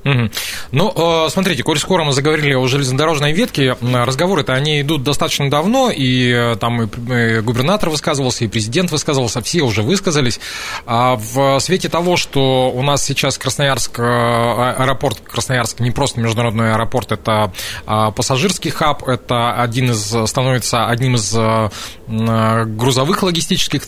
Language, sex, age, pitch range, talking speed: Russian, male, 20-39, 120-155 Hz, 125 wpm